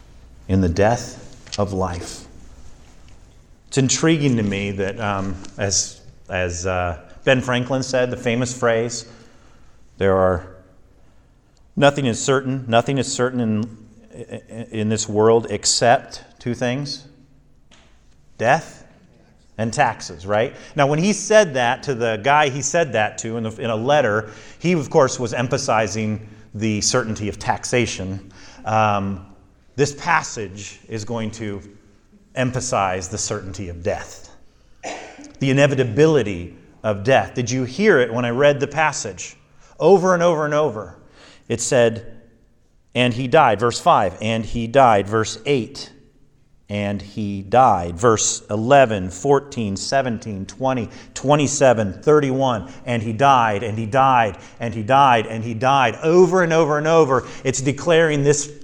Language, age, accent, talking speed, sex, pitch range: English, 40-59, American, 140 wpm, male, 100-135 Hz